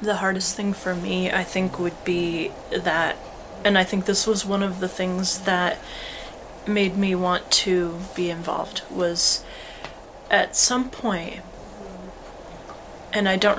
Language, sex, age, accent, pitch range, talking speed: English, female, 30-49, American, 175-195 Hz, 145 wpm